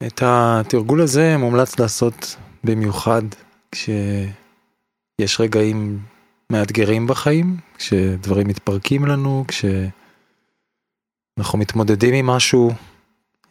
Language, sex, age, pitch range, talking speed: Hebrew, male, 20-39, 105-125 Hz, 75 wpm